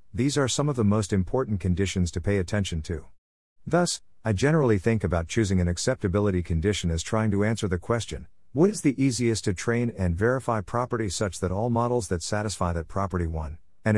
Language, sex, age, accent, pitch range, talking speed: English, male, 50-69, American, 90-115 Hz, 200 wpm